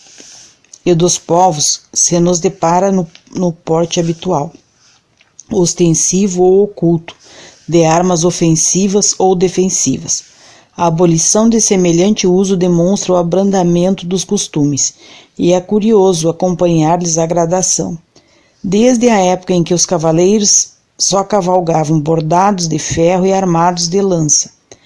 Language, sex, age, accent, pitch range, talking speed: Portuguese, female, 40-59, Brazilian, 165-190 Hz, 120 wpm